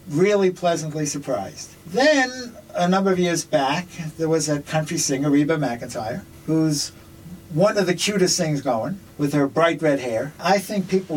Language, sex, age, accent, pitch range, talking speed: English, male, 60-79, American, 150-190 Hz, 165 wpm